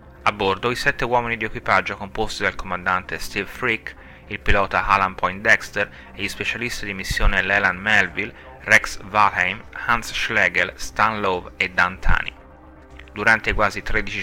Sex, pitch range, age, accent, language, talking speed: male, 90-110 Hz, 30-49, native, Italian, 150 wpm